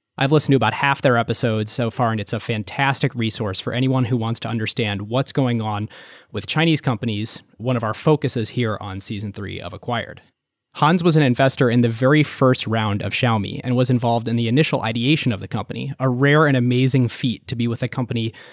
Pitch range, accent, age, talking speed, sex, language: 110-135 Hz, American, 20-39, 215 wpm, male, English